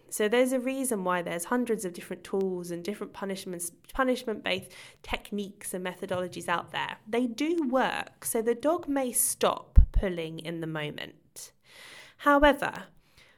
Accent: British